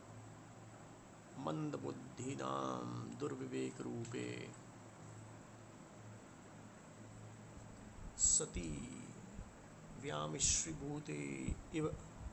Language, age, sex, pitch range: Hindi, 50-69, male, 70-115 Hz